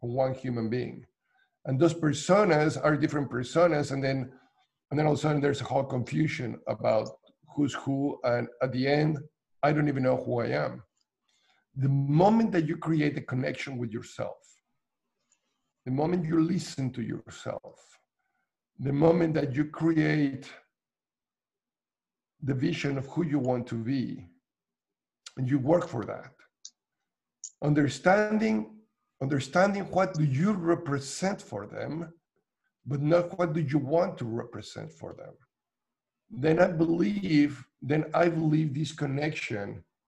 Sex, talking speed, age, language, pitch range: male, 140 wpm, 50-69, English, 130-165 Hz